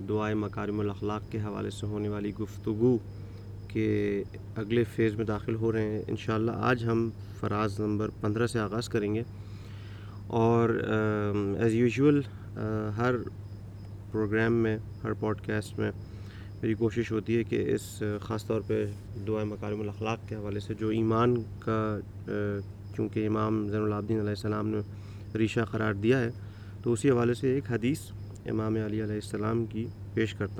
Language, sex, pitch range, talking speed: Urdu, male, 100-120 Hz, 155 wpm